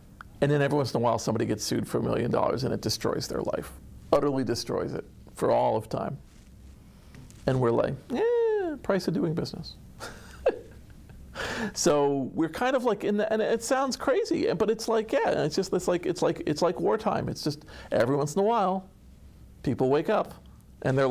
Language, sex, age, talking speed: English, male, 40-59, 200 wpm